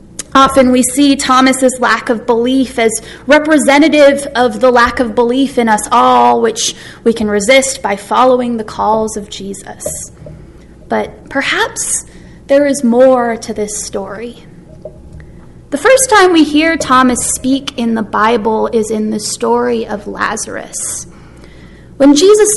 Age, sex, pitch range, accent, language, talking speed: 20-39, female, 215-270 Hz, American, English, 140 wpm